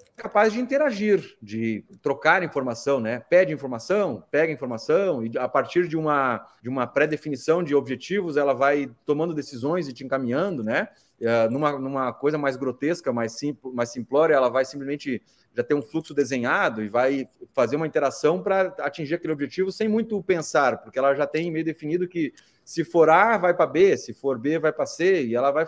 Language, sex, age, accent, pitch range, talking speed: Portuguese, male, 30-49, Brazilian, 140-190 Hz, 180 wpm